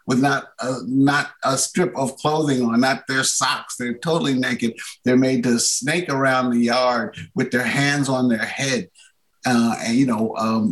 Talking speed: 185 wpm